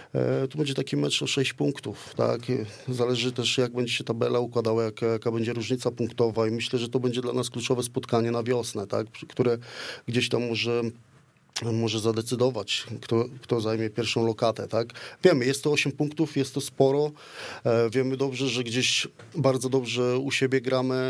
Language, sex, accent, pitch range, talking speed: Polish, male, native, 115-130 Hz, 175 wpm